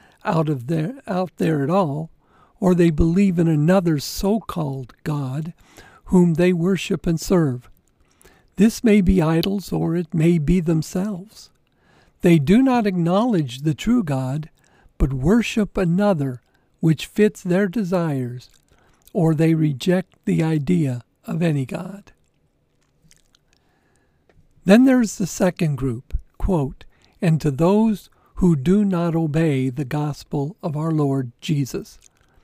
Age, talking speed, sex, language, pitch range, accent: 60-79, 130 wpm, male, English, 150-195 Hz, American